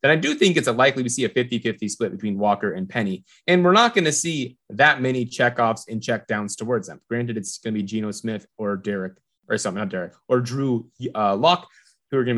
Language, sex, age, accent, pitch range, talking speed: English, male, 20-39, American, 100-125 Hz, 240 wpm